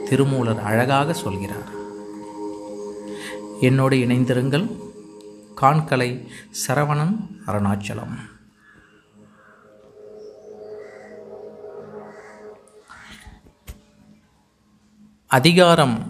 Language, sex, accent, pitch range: Tamil, male, native, 110-160 Hz